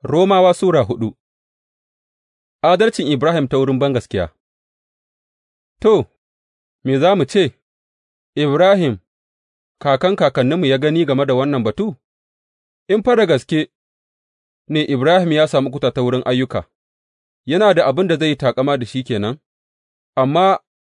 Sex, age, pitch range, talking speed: male, 30-49, 115-170 Hz, 95 wpm